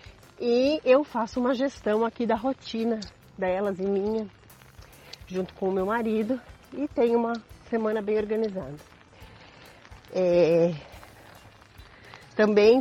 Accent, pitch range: Brazilian, 195-250 Hz